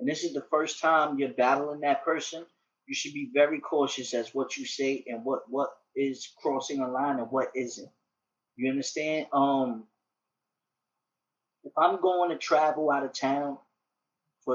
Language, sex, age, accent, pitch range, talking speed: English, male, 20-39, American, 130-160 Hz, 170 wpm